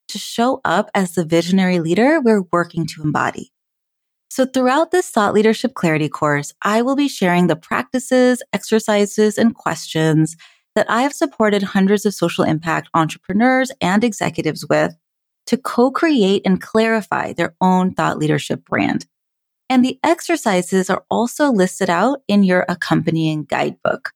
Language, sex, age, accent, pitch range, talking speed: English, female, 30-49, American, 170-245 Hz, 145 wpm